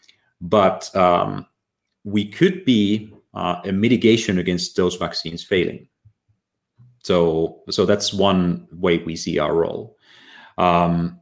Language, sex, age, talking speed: English, male, 30-49, 120 wpm